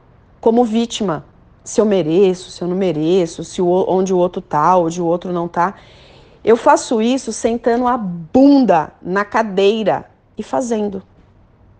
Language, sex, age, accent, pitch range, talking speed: Portuguese, female, 30-49, Brazilian, 185-250 Hz, 155 wpm